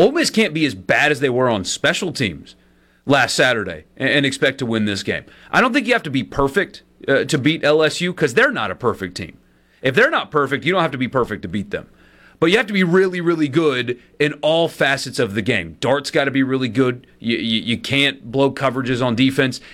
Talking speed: 240 wpm